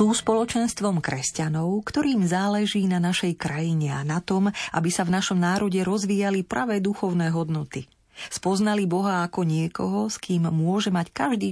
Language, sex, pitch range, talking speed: Slovak, female, 160-210 Hz, 150 wpm